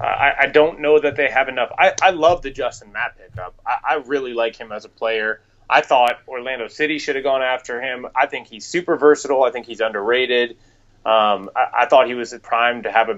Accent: American